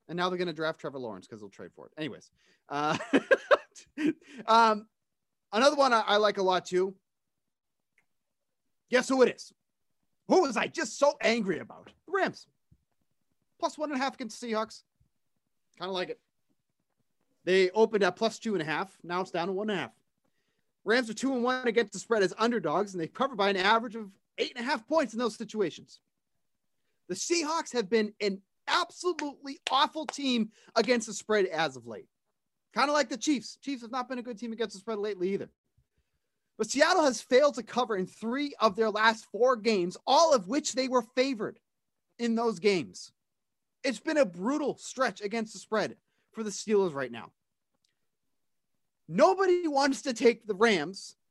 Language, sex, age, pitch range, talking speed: English, male, 30-49, 200-265 Hz, 190 wpm